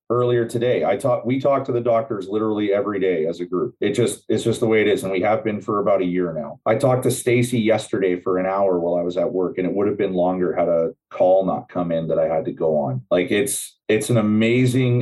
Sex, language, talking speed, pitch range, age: male, English, 270 wpm, 90-115 Hz, 30-49